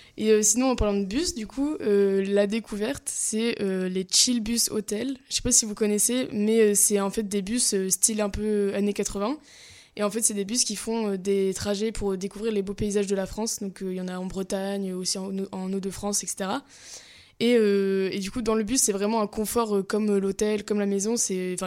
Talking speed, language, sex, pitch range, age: 245 wpm, French, female, 195-220 Hz, 20-39